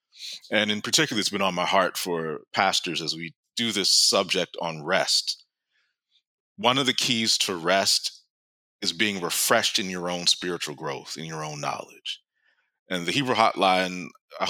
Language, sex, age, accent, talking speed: English, male, 30-49, American, 165 wpm